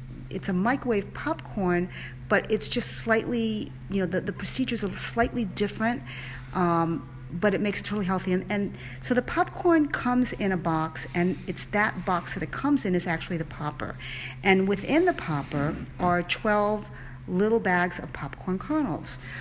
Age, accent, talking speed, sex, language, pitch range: 40-59, American, 170 wpm, female, English, 145-205 Hz